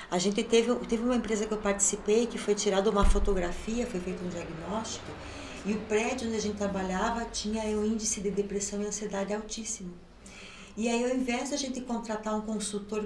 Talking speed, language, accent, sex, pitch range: 200 wpm, Portuguese, Brazilian, female, 200-250 Hz